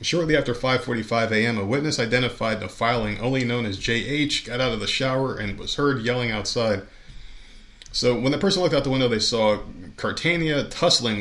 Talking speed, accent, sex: 185 wpm, American, male